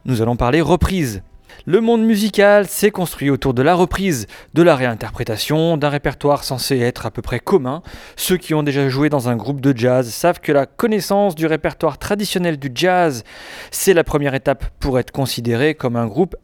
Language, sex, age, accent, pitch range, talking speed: French, male, 30-49, French, 125-180 Hz, 195 wpm